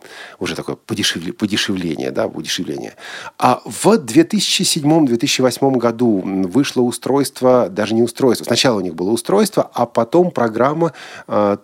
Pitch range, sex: 110-150 Hz, male